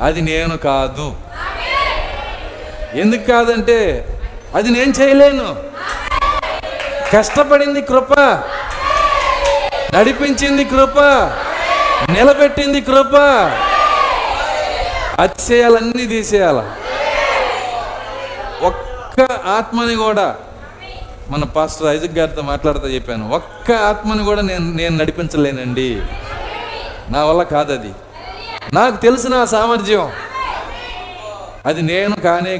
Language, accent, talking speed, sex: Telugu, native, 75 wpm, male